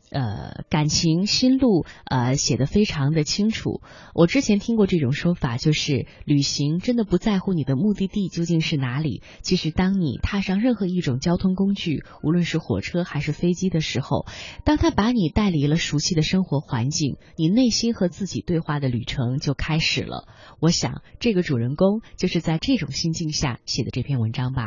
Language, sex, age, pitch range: Chinese, female, 20-39, 135-180 Hz